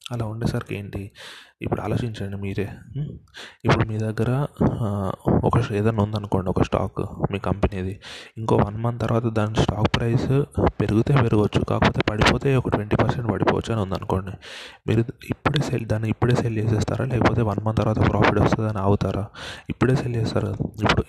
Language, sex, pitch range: Telugu, male, 100-120 Hz